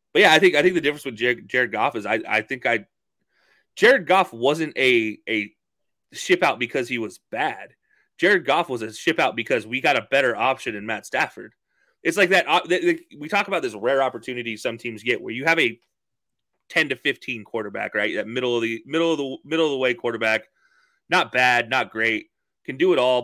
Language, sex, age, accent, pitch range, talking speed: English, male, 30-49, American, 120-170 Hz, 215 wpm